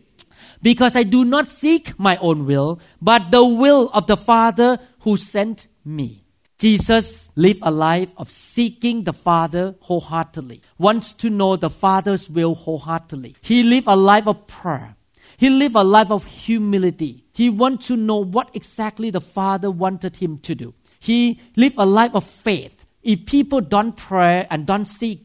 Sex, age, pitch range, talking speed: male, 50-69, 160-215 Hz, 165 wpm